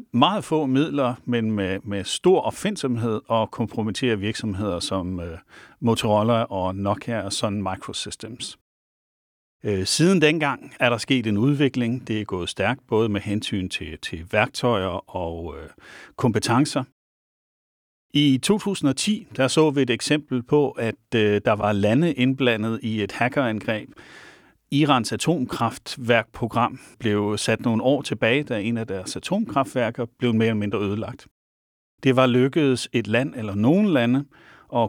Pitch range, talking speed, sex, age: 105-135 Hz, 135 wpm, male, 40-59